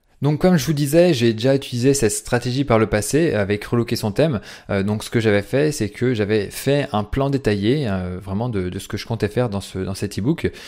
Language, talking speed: French, 245 wpm